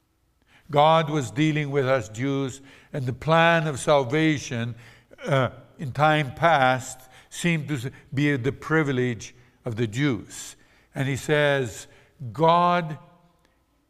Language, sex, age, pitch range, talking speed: English, male, 60-79, 120-160 Hz, 115 wpm